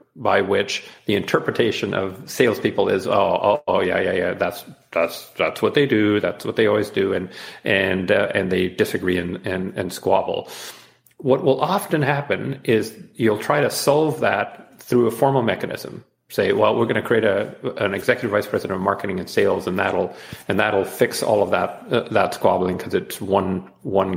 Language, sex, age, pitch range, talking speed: English, male, 40-59, 105-135 Hz, 195 wpm